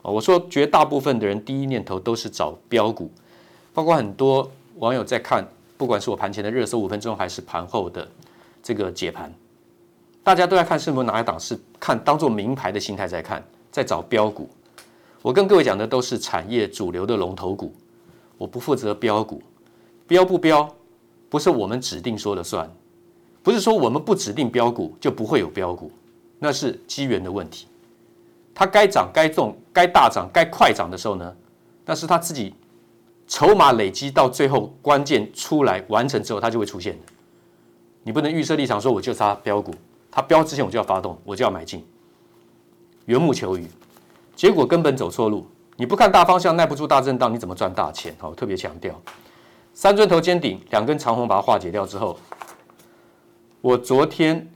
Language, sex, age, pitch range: Chinese, male, 50-69, 115-170 Hz